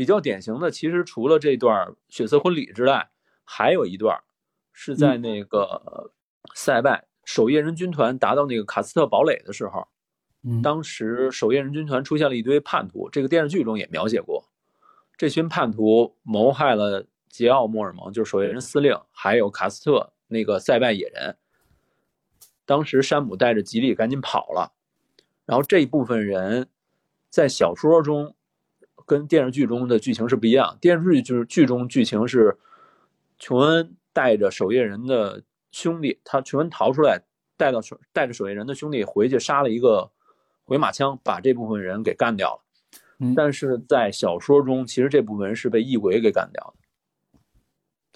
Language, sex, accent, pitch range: Chinese, male, native, 115-155 Hz